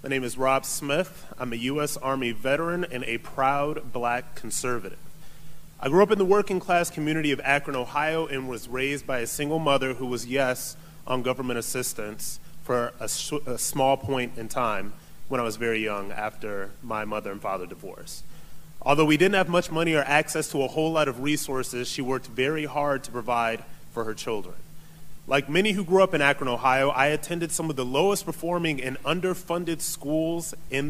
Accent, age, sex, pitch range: American, 30-49, male, 130-160 Hz